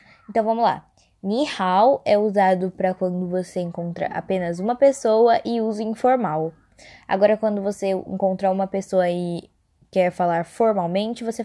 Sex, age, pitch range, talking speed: female, 10-29, 185-250 Hz, 145 wpm